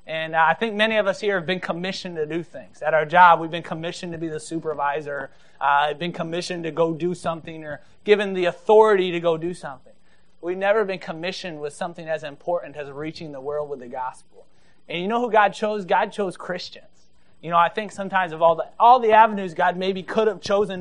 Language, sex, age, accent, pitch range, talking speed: English, male, 30-49, American, 160-200 Hz, 230 wpm